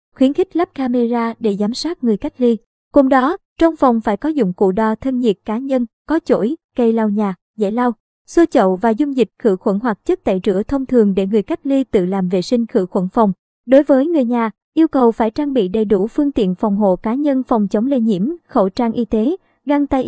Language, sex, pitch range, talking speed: Vietnamese, male, 220-275 Hz, 240 wpm